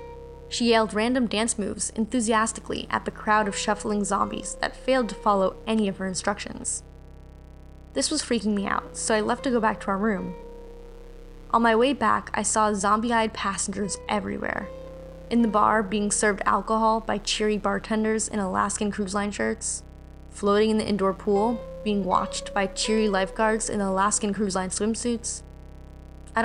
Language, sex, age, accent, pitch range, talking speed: English, female, 10-29, American, 195-225 Hz, 165 wpm